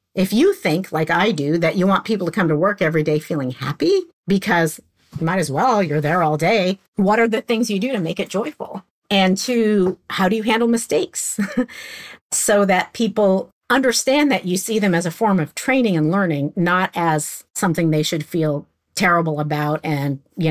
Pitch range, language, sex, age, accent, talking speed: 165-230 Hz, English, female, 50-69, American, 200 wpm